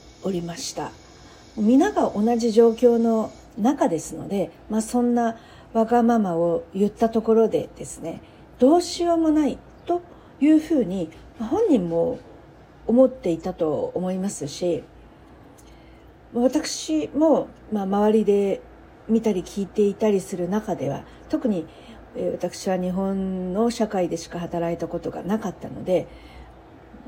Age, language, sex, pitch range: 50-69, Japanese, female, 170-240 Hz